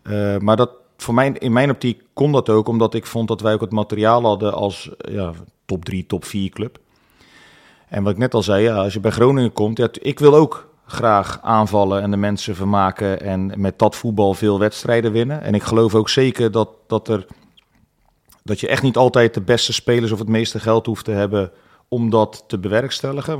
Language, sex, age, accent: Dutch, male, 40-59, Dutch